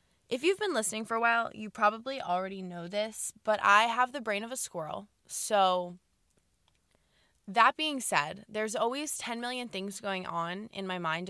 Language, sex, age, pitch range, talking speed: English, female, 20-39, 180-230 Hz, 180 wpm